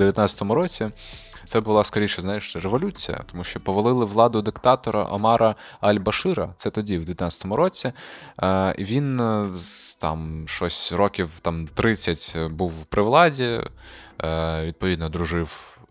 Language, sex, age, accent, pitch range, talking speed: Ukrainian, male, 20-39, native, 85-105 Hz, 115 wpm